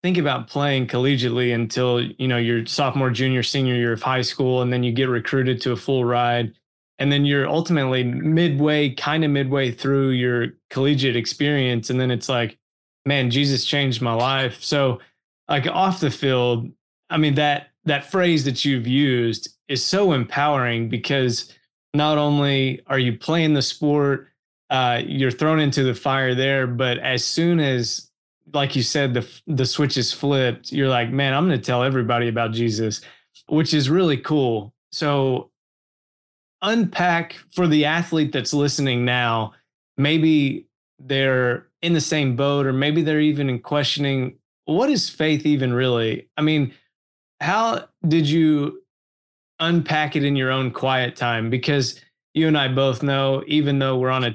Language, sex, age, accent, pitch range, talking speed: English, male, 20-39, American, 125-150 Hz, 165 wpm